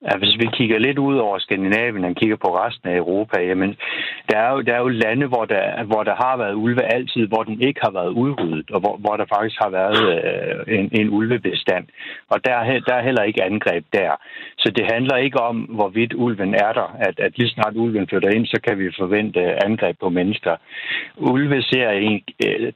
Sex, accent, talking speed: male, native, 210 wpm